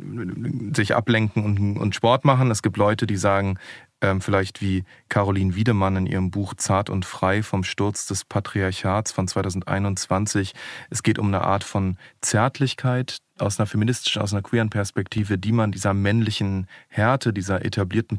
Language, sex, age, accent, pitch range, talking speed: German, male, 30-49, German, 100-120 Hz, 155 wpm